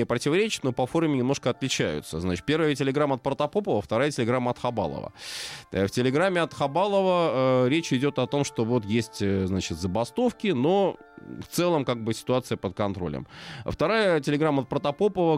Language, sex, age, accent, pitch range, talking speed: Russian, male, 20-39, native, 105-140 Hz, 160 wpm